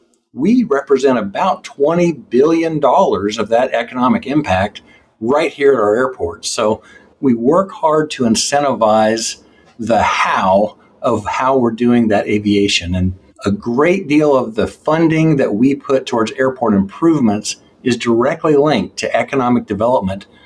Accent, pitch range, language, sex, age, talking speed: American, 100-140 Hz, English, male, 50-69, 140 wpm